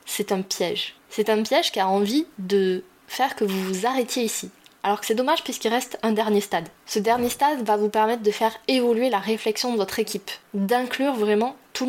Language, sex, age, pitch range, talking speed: French, female, 20-39, 205-250 Hz, 210 wpm